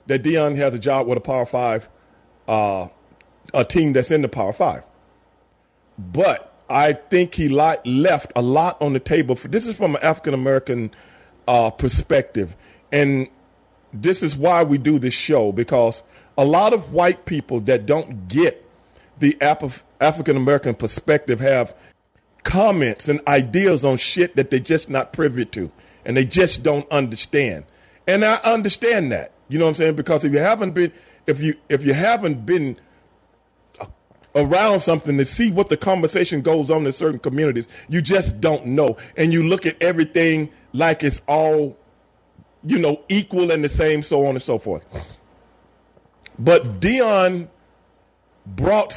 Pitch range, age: 130-165 Hz, 40-59